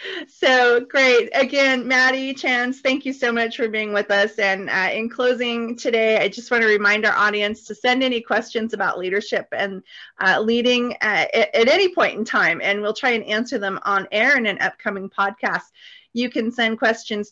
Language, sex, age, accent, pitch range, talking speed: English, female, 30-49, American, 205-270 Hz, 195 wpm